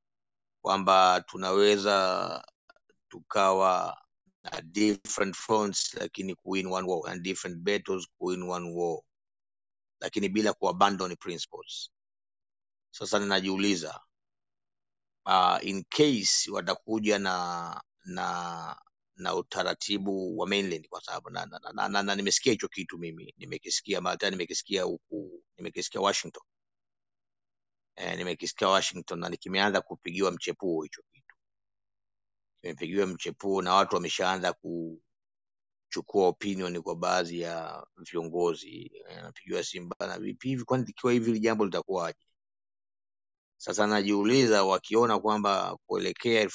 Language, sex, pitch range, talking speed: Swahili, male, 90-100 Hz, 115 wpm